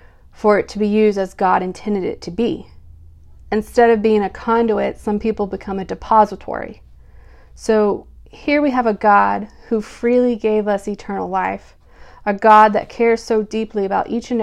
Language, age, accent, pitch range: English, 30-49, American, 175-220 Hz